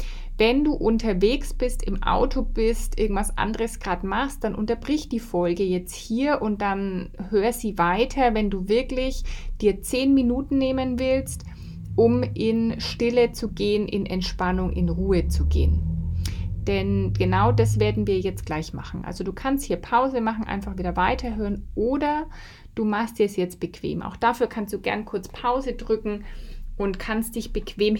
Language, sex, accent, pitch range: German, female, German, 185-250 Hz